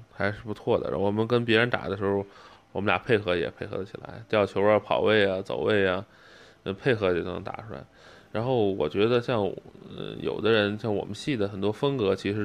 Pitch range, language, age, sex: 100-125 Hz, Chinese, 20-39, male